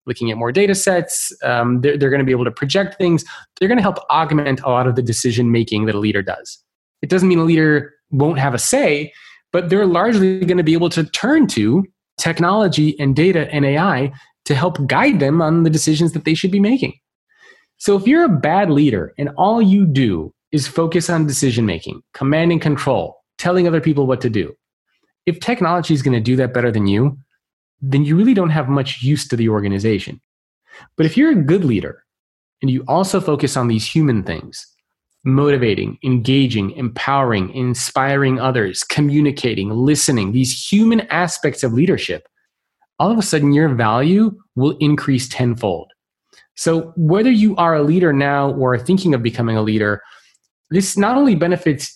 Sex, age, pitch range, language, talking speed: male, 20-39, 130-180 Hz, English, 180 wpm